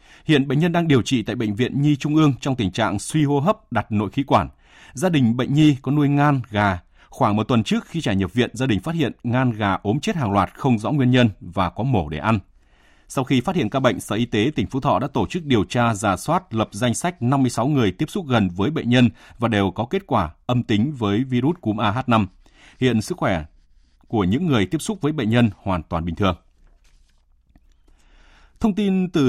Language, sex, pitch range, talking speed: Vietnamese, male, 100-145 Hz, 240 wpm